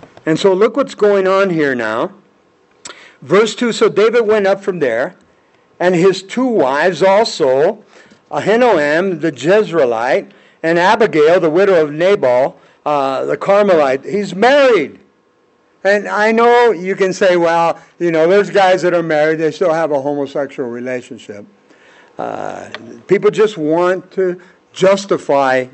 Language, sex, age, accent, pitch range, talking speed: English, male, 60-79, American, 165-210 Hz, 140 wpm